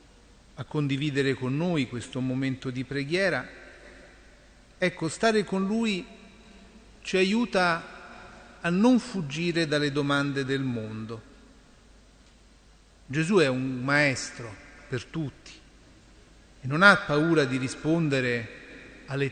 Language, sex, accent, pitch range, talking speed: Italian, male, native, 130-180 Hz, 105 wpm